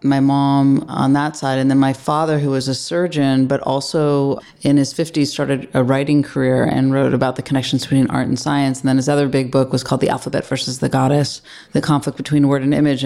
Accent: American